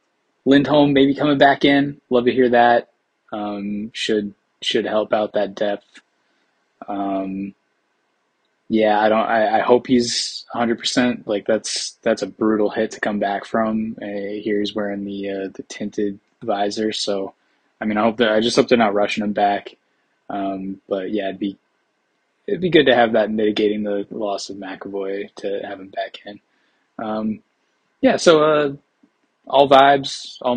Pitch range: 105-120 Hz